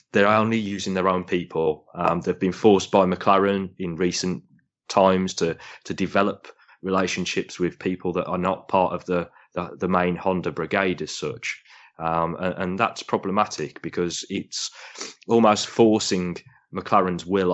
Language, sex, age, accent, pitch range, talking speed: English, male, 20-39, British, 90-100 Hz, 155 wpm